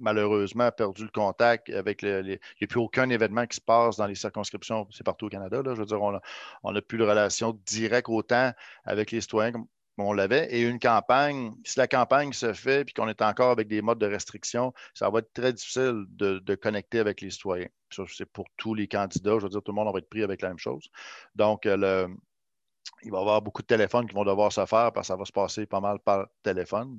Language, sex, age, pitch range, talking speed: French, male, 50-69, 105-120 Hz, 245 wpm